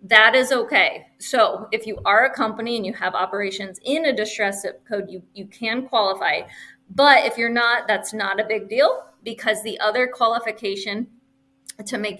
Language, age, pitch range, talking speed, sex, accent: English, 20-39, 200-235 Hz, 175 wpm, female, American